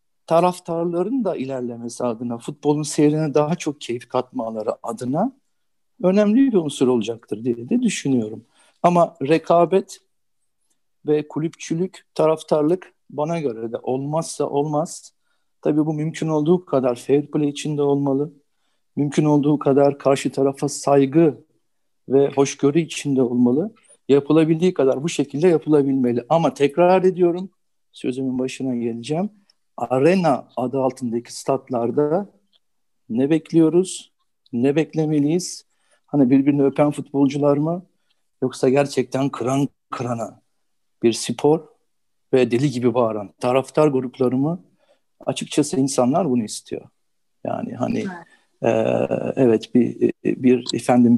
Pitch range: 125-160 Hz